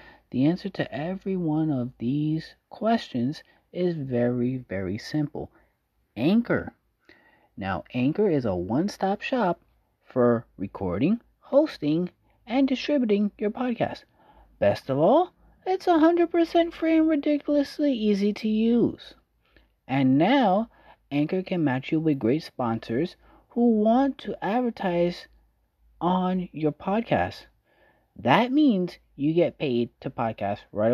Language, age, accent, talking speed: English, 30-49, American, 120 wpm